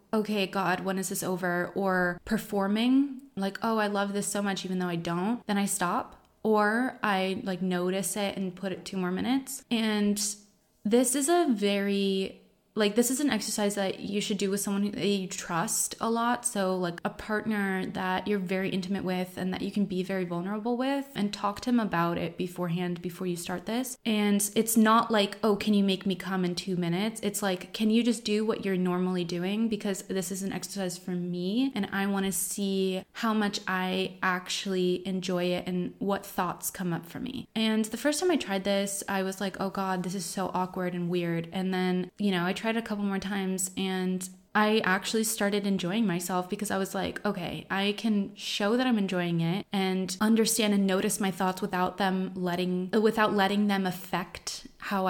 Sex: female